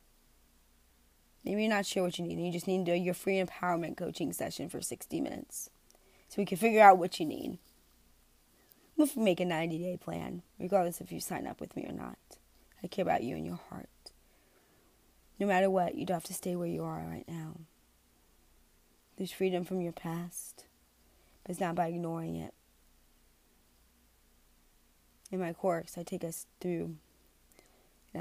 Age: 20-39